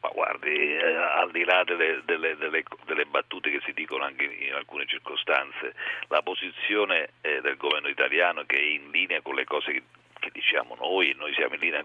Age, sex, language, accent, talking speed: 50-69, male, Italian, native, 205 wpm